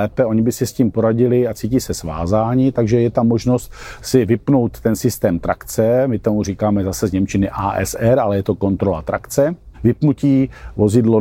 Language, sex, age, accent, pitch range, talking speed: Czech, male, 50-69, native, 105-125 Hz, 175 wpm